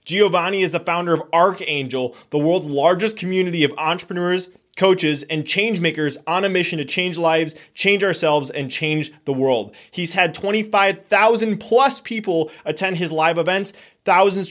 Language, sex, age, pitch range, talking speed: English, male, 20-39, 160-195 Hz, 155 wpm